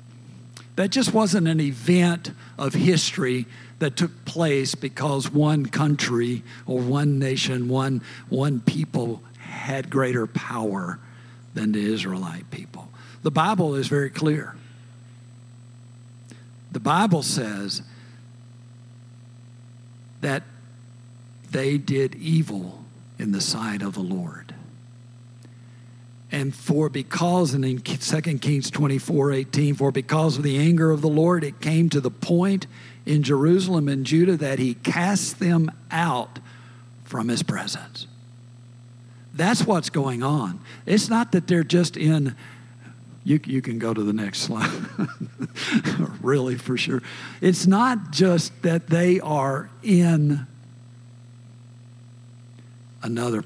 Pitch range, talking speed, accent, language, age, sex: 120-155 Hz, 120 wpm, American, English, 50-69, male